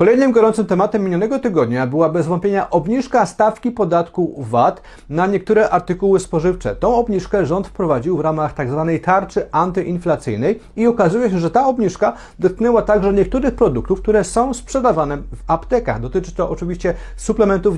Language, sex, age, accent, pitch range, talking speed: Polish, male, 40-59, native, 160-220 Hz, 150 wpm